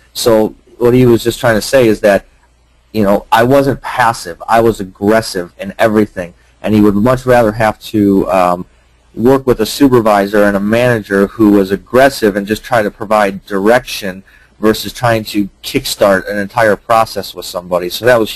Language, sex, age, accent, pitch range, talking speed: English, male, 30-49, American, 100-115 Hz, 185 wpm